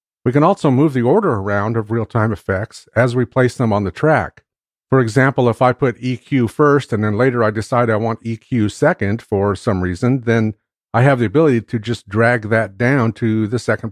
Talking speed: 210 wpm